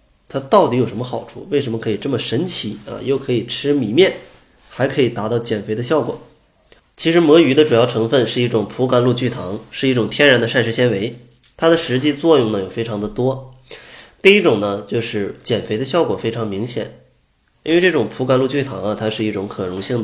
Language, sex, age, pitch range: Chinese, male, 20-39, 110-145 Hz